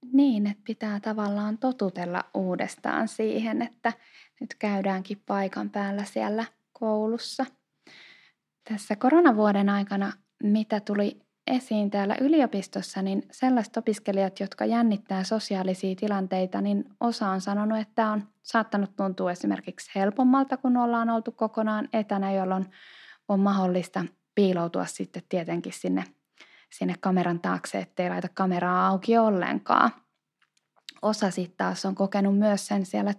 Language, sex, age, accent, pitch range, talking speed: Finnish, female, 20-39, native, 190-235 Hz, 125 wpm